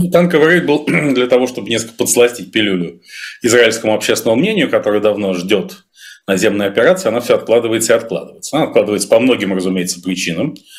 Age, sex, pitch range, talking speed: 30-49, male, 95-115 Hz, 155 wpm